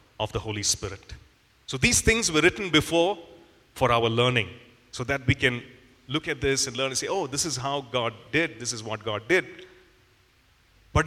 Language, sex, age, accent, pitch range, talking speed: English, male, 30-49, Indian, 120-160 Hz, 195 wpm